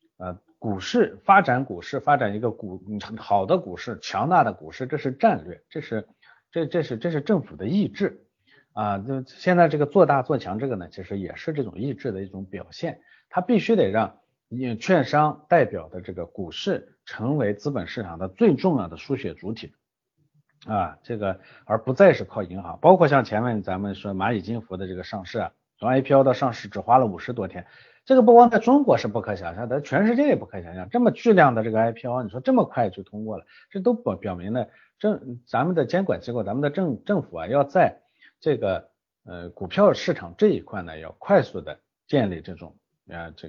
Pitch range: 95-150 Hz